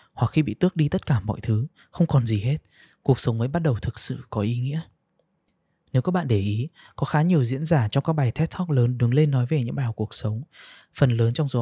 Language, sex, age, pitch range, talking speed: Vietnamese, male, 20-39, 115-150 Hz, 270 wpm